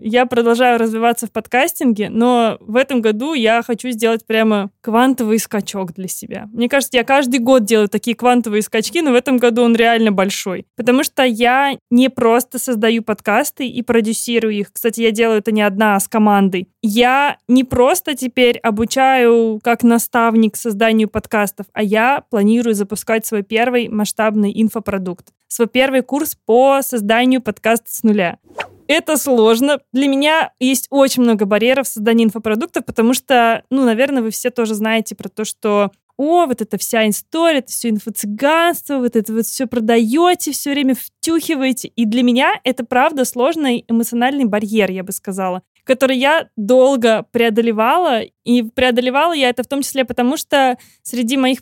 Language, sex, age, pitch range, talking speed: Russian, female, 20-39, 220-255 Hz, 165 wpm